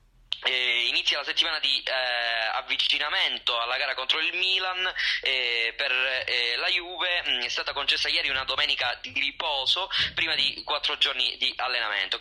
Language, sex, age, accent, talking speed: Italian, male, 20-39, native, 145 wpm